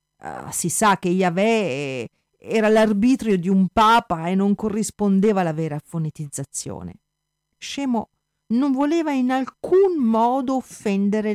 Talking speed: 120 wpm